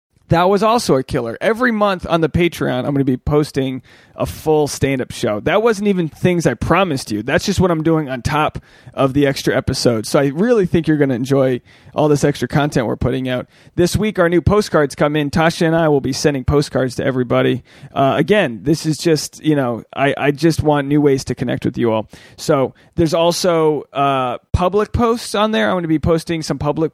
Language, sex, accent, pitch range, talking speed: English, male, American, 130-165 Hz, 225 wpm